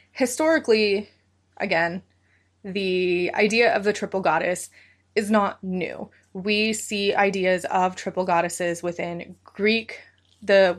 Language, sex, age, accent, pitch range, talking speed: English, female, 20-39, American, 175-210 Hz, 110 wpm